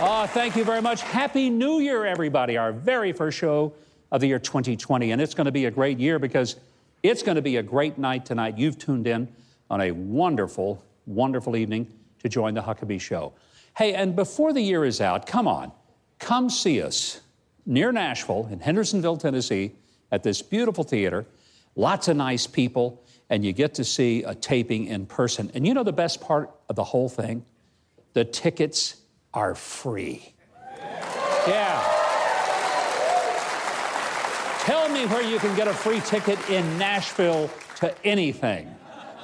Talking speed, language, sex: 165 wpm, English, male